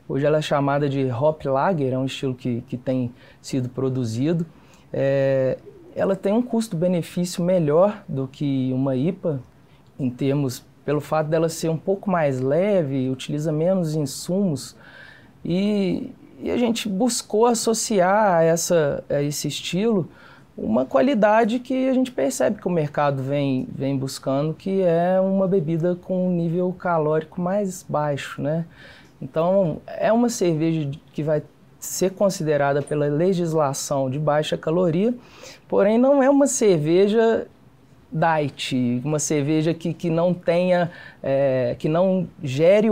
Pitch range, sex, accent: 140-190 Hz, male, Brazilian